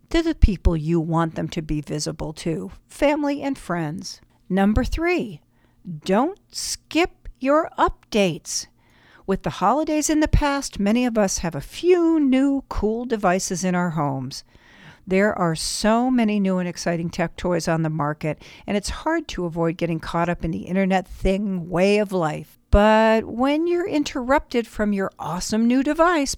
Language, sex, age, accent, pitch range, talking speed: English, female, 60-79, American, 170-260 Hz, 165 wpm